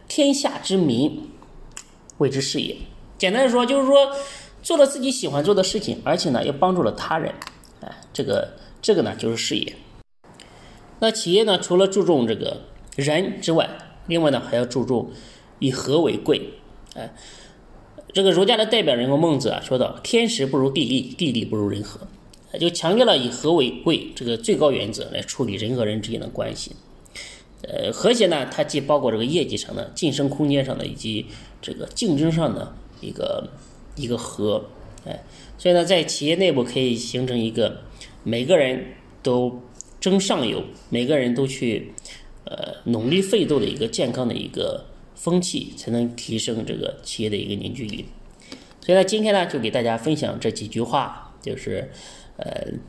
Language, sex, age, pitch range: Chinese, male, 20-39, 120-190 Hz